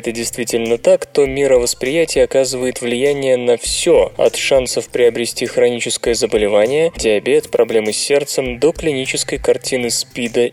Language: Russian